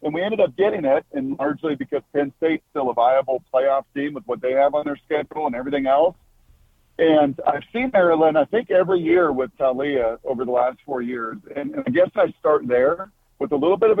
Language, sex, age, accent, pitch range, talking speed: English, male, 50-69, American, 140-200 Hz, 225 wpm